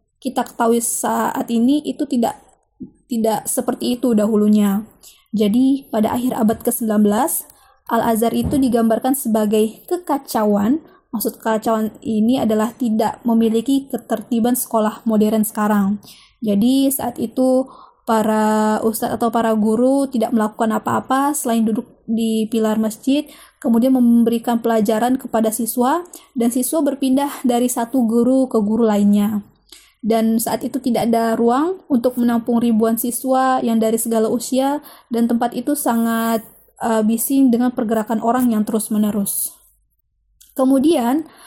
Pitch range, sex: 225-260 Hz, female